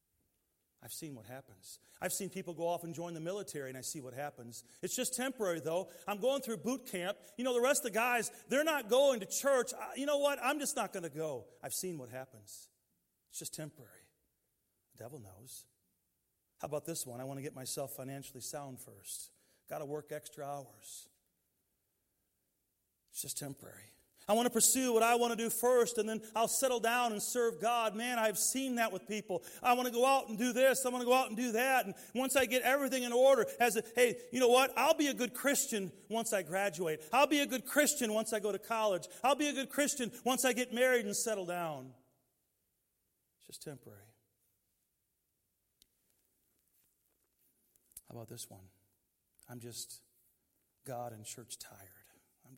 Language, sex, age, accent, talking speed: English, male, 40-59, American, 200 wpm